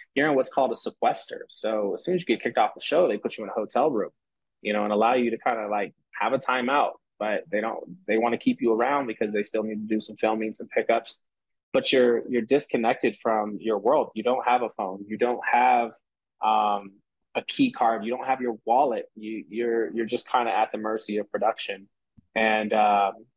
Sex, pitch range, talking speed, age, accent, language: male, 105-120 Hz, 225 wpm, 20-39, American, English